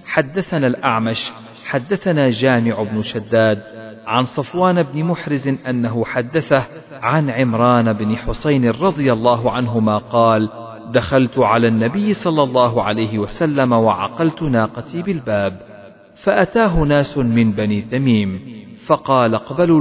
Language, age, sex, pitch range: Arabic, 40-59, male, 110-165 Hz